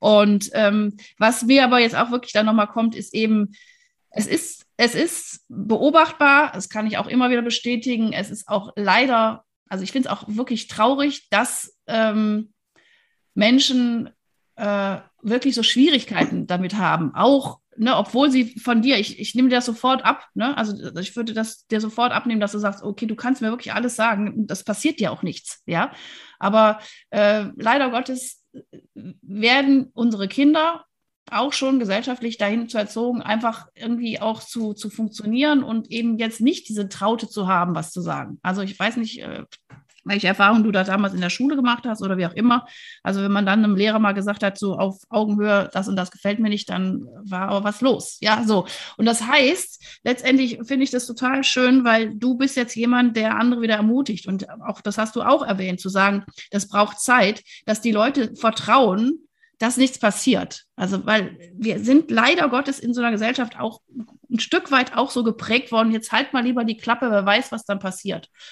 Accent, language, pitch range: German, German, 205-250 Hz